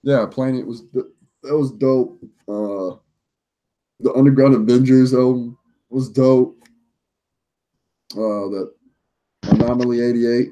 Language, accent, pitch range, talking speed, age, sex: English, American, 110-130 Hz, 95 wpm, 20-39, male